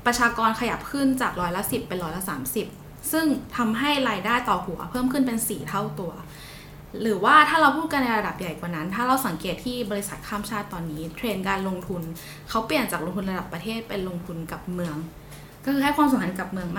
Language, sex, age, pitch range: Thai, female, 10-29, 180-240 Hz